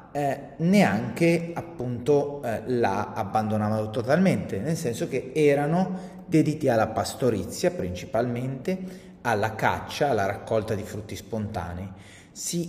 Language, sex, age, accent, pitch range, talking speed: Italian, male, 30-49, native, 110-160 Hz, 110 wpm